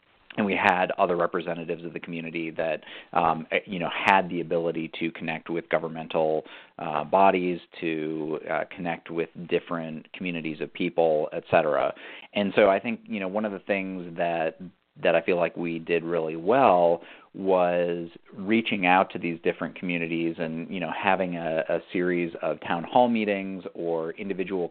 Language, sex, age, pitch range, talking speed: English, male, 40-59, 85-95 Hz, 170 wpm